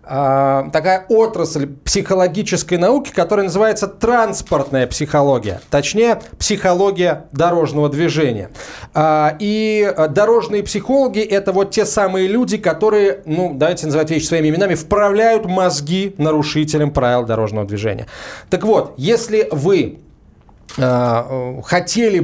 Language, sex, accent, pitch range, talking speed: Russian, male, native, 135-195 Hz, 105 wpm